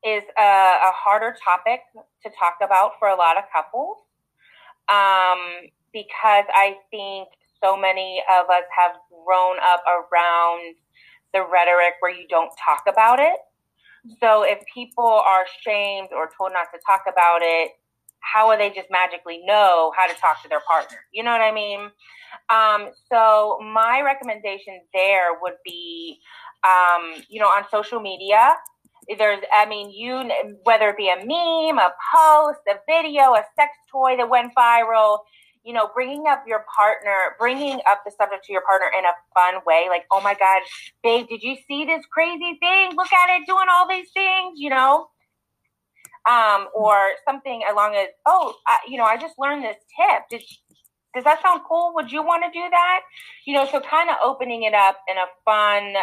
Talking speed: 180 wpm